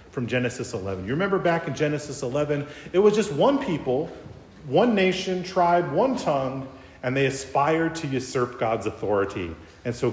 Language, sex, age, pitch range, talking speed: English, male, 40-59, 120-180 Hz, 165 wpm